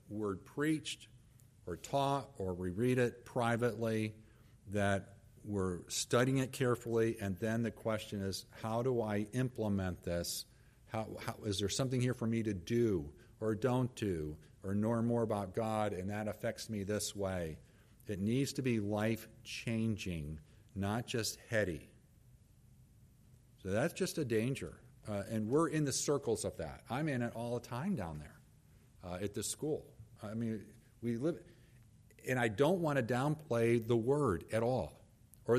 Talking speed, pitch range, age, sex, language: 165 wpm, 105-130 Hz, 50-69, male, English